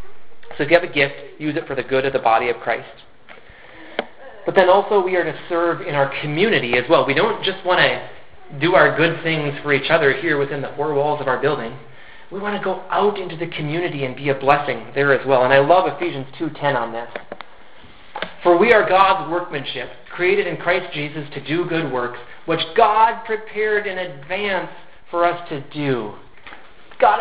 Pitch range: 140-185 Hz